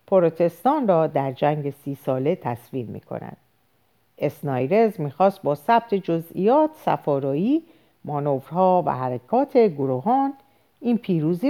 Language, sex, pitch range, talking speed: Persian, female, 145-220 Hz, 115 wpm